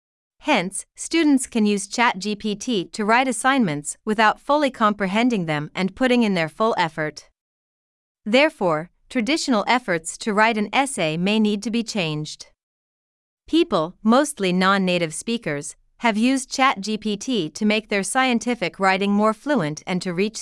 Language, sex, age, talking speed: Vietnamese, female, 40-59, 140 wpm